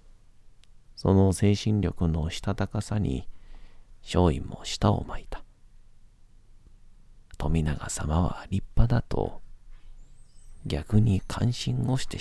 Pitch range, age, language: 80-105 Hz, 40-59, Japanese